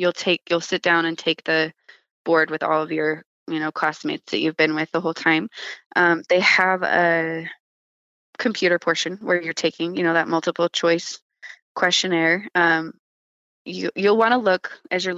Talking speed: 180 wpm